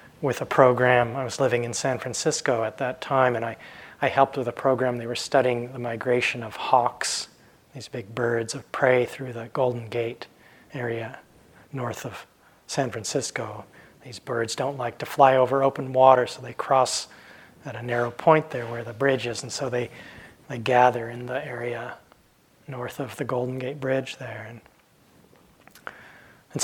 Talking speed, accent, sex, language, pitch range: 175 wpm, American, male, English, 120-135 Hz